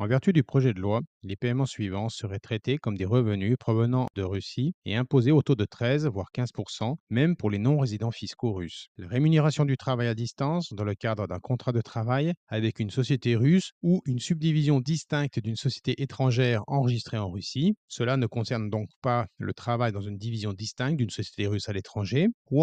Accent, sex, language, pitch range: French, male, French, 115-145 Hz